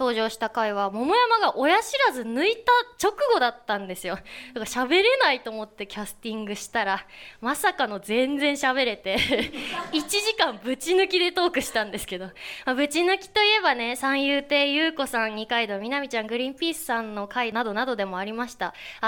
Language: Japanese